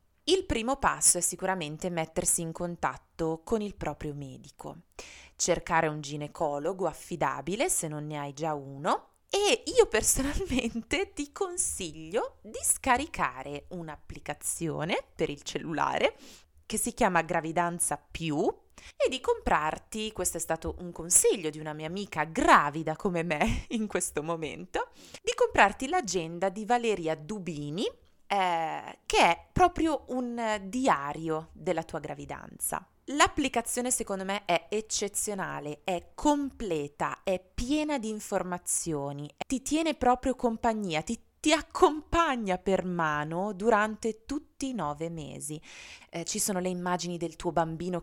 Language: Italian